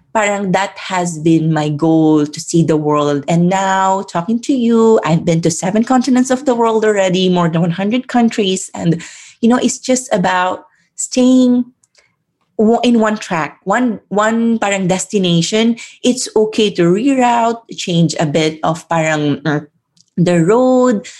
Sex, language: female, English